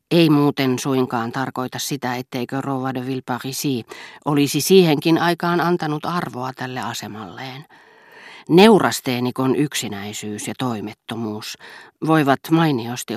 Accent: native